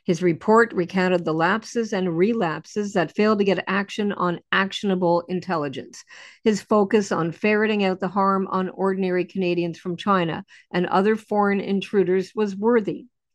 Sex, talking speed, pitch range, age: female, 150 wpm, 180-215 Hz, 50-69